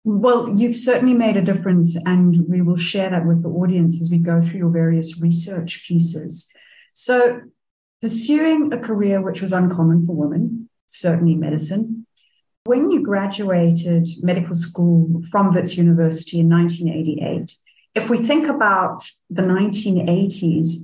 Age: 40-59